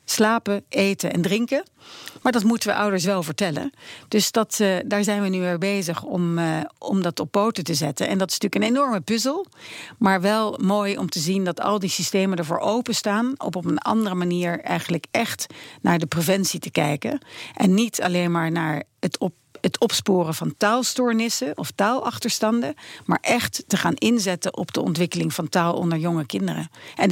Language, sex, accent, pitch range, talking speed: Dutch, female, Dutch, 175-215 Hz, 190 wpm